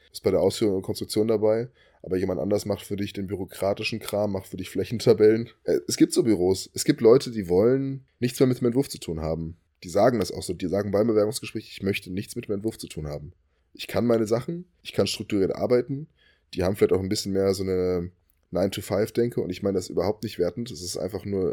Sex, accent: male, German